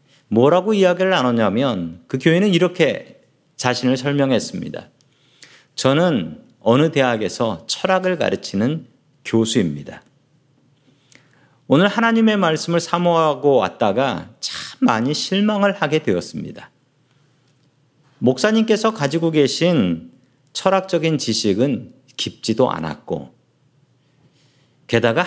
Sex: male